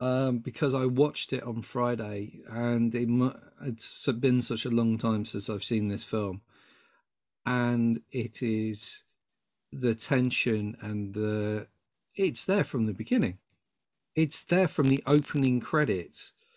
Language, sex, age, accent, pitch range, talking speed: English, male, 40-59, British, 115-150 Hz, 140 wpm